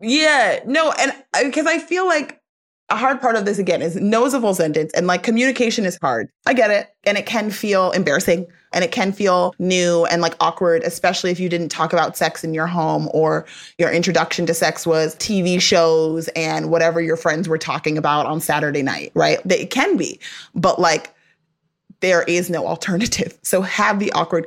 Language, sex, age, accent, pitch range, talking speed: English, female, 30-49, American, 165-225 Hz, 200 wpm